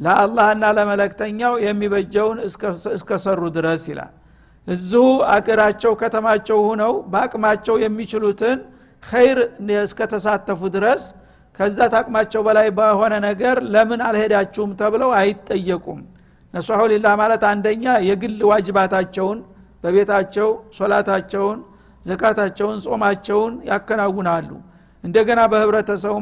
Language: Amharic